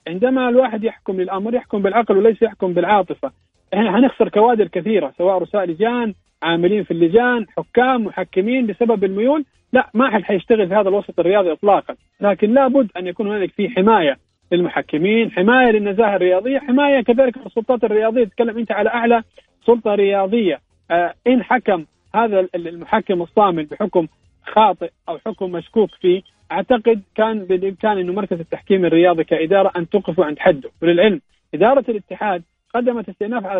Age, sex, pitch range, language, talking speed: 40-59, male, 180-230 Hz, Arabic, 145 wpm